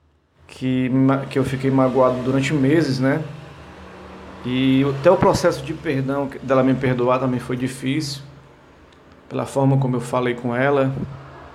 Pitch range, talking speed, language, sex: 120-140 Hz, 135 wpm, English, male